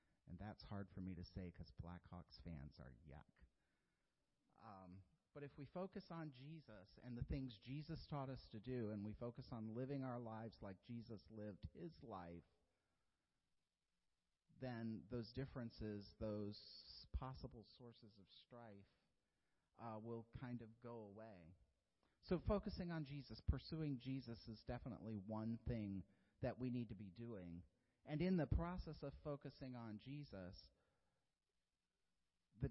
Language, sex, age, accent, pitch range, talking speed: English, male, 40-59, American, 100-130 Hz, 145 wpm